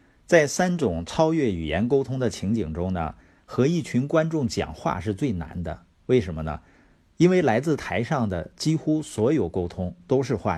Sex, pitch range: male, 85-135 Hz